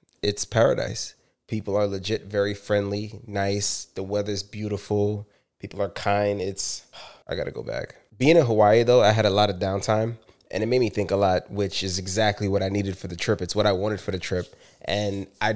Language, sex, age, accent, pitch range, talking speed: English, male, 20-39, American, 100-115 Hz, 210 wpm